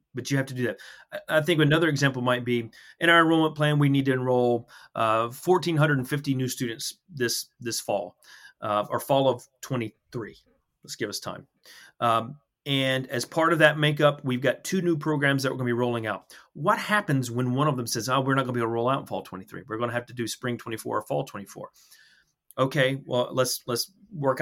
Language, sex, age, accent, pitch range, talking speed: English, male, 30-49, American, 120-145 Hz, 225 wpm